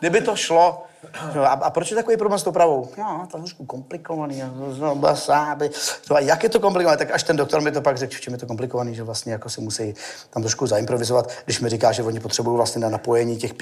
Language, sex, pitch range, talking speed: Czech, male, 120-145 Hz, 240 wpm